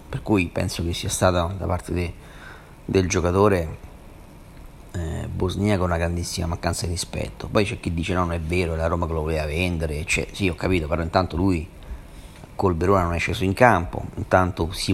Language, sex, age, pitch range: Italian, male, 40-59, 85-100 Hz